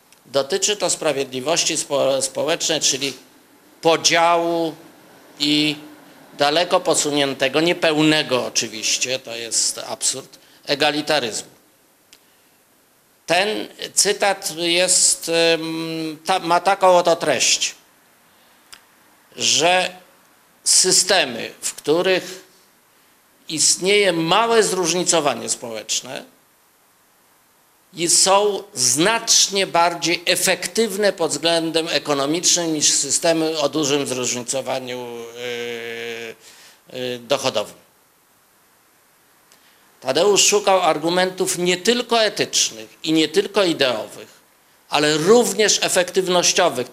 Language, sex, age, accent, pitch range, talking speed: Polish, male, 50-69, native, 140-185 Hz, 75 wpm